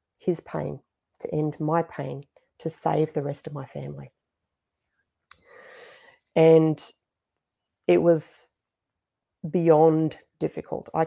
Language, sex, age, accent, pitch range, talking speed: English, female, 40-59, Australian, 150-165 Hz, 105 wpm